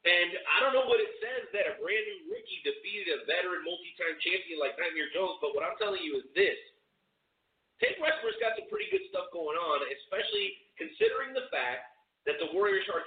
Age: 40-59